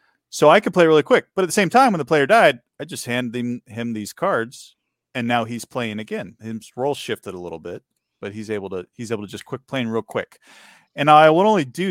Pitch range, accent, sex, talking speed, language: 105-135 Hz, American, male, 250 wpm, English